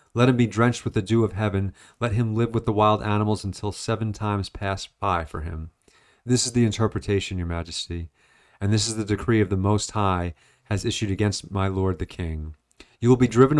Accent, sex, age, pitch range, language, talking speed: American, male, 40-59, 90-110 Hz, English, 215 wpm